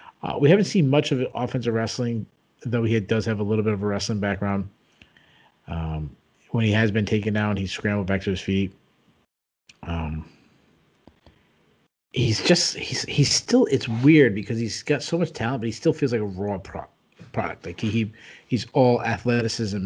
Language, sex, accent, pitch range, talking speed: English, male, American, 100-135 Hz, 180 wpm